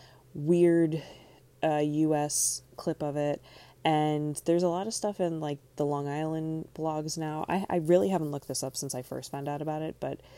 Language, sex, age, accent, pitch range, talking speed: English, female, 20-39, American, 135-175 Hz, 195 wpm